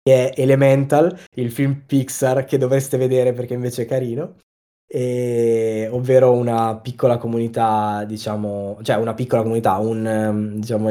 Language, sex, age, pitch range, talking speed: Italian, male, 20-39, 105-130 Hz, 140 wpm